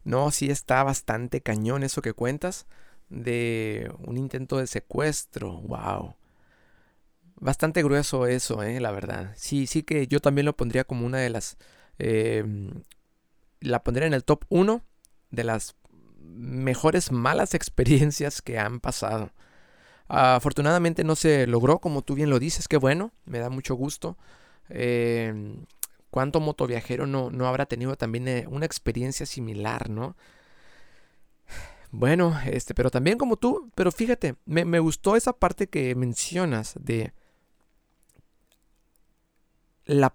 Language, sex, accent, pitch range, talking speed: Spanish, male, Mexican, 120-150 Hz, 135 wpm